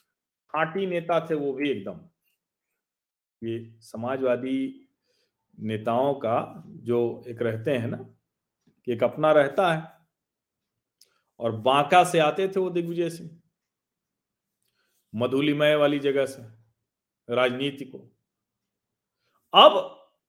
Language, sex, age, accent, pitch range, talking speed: Hindi, male, 40-59, native, 125-175 Hz, 100 wpm